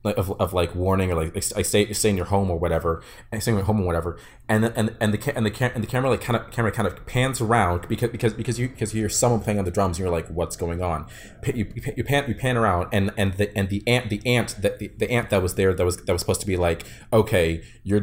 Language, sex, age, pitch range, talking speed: English, male, 30-49, 90-115 Hz, 295 wpm